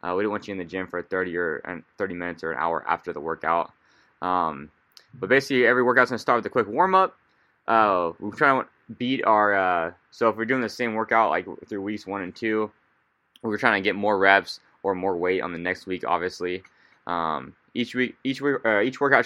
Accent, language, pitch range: American, English, 95-120 Hz